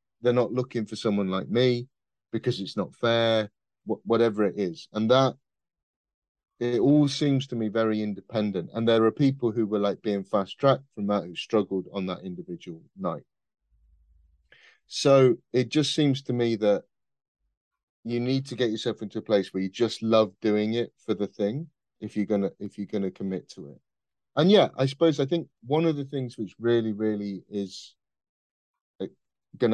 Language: English